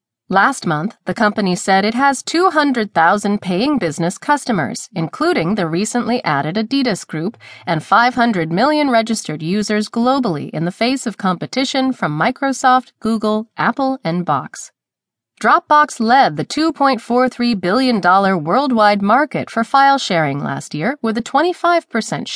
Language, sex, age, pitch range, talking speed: English, female, 30-49, 180-260 Hz, 130 wpm